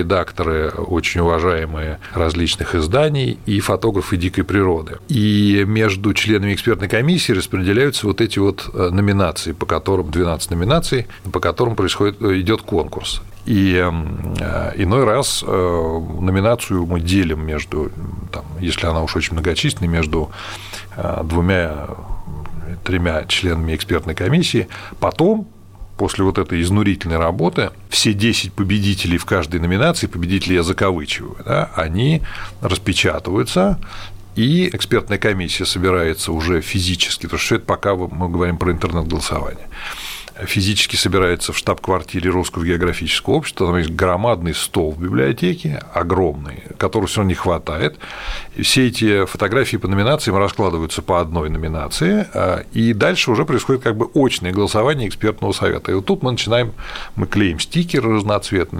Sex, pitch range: male, 85-110 Hz